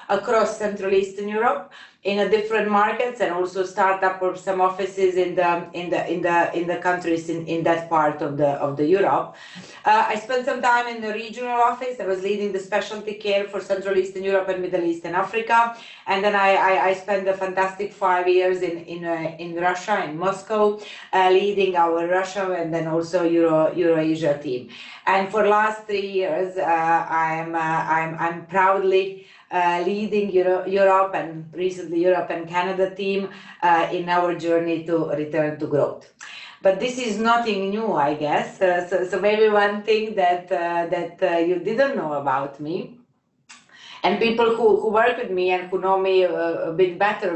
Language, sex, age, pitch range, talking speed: English, female, 30-49, 170-205 Hz, 190 wpm